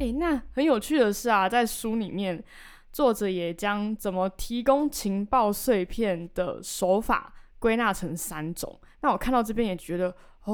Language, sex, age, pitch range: Chinese, female, 20-39, 185-245 Hz